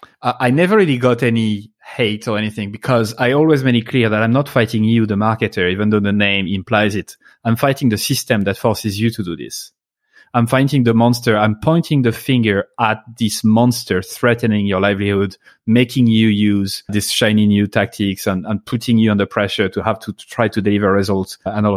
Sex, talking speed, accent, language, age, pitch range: male, 200 wpm, French, English, 30-49, 105-125 Hz